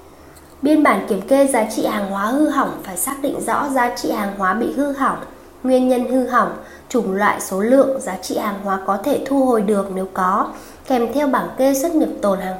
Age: 20-39